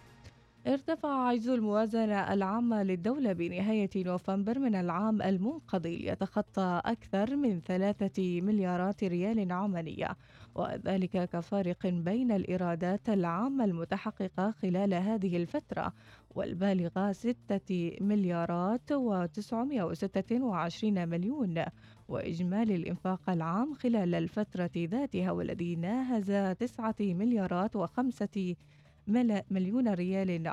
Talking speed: 90 wpm